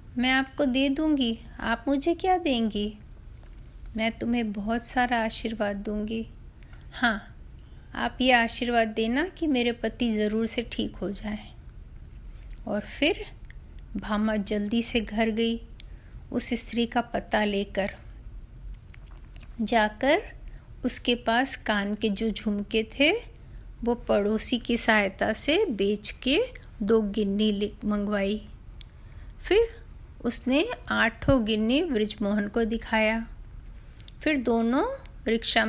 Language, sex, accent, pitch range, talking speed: Hindi, female, native, 215-275 Hz, 115 wpm